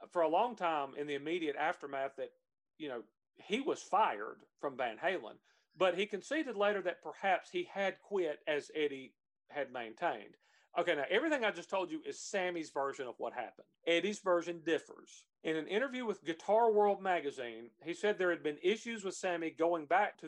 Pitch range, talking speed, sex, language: 145-200 Hz, 190 wpm, male, English